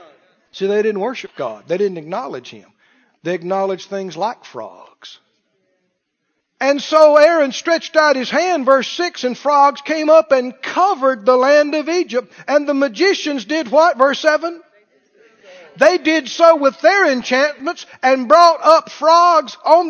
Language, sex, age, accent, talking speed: English, male, 40-59, American, 155 wpm